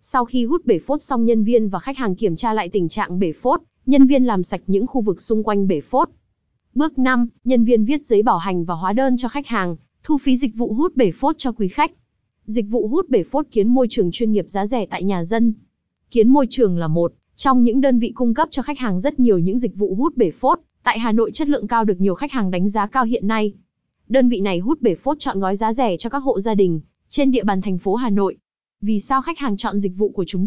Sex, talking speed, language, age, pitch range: female, 270 wpm, Vietnamese, 20-39, 200-260 Hz